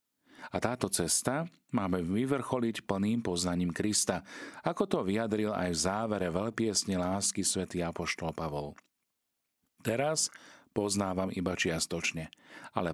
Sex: male